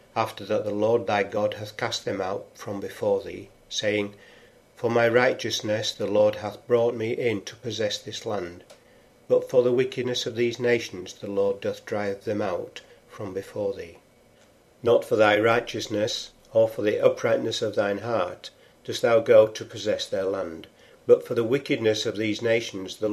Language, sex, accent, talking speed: English, male, British, 180 wpm